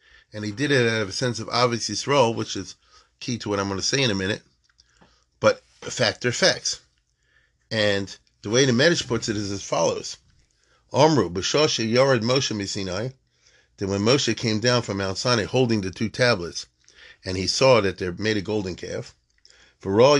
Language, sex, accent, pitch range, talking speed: English, male, American, 100-135 Hz, 195 wpm